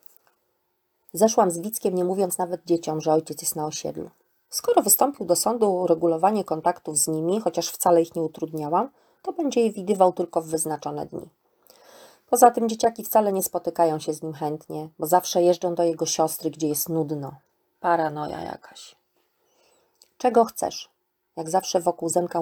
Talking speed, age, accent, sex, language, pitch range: 165 wpm, 30-49, native, female, Polish, 165-215 Hz